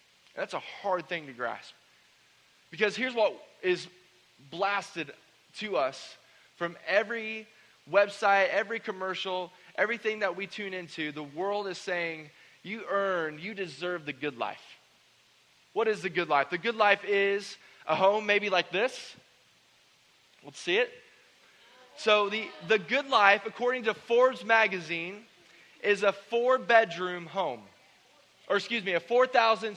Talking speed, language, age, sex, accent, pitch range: 140 wpm, English, 20-39, male, American, 185-220 Hz